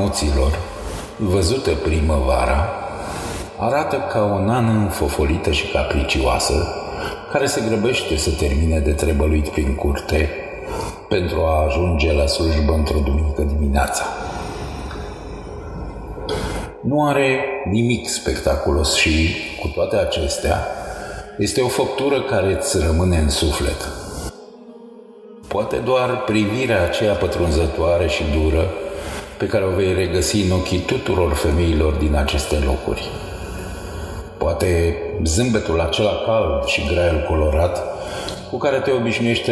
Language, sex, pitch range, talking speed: Romanian, male, 75-95 Hz, 110 wpm